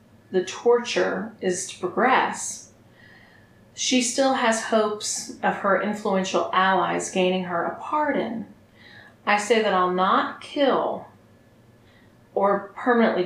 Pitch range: 180-235 Hz